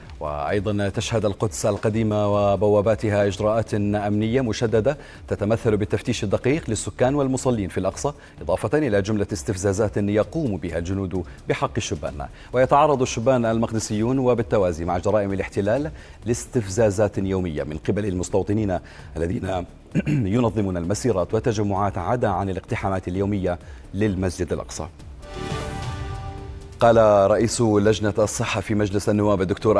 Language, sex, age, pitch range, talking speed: Arabic, male, 30-49, 100-115 Hz, 110 wpm